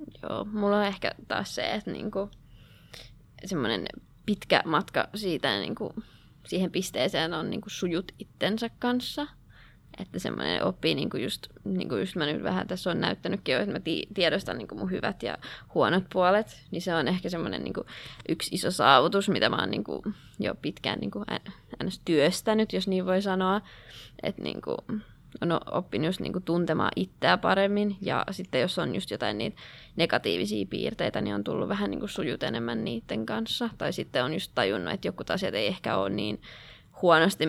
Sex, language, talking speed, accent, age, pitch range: female, Finnish, 170 wpm, native, 20-39, 155-205 Hz